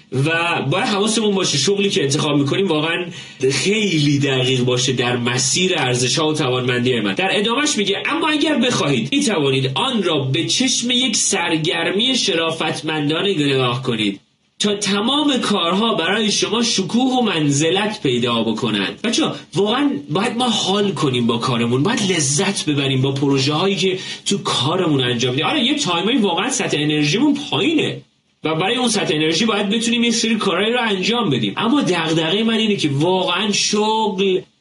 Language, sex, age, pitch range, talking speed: Persian, male, 30-49, 140-205 Hz, 160 wpm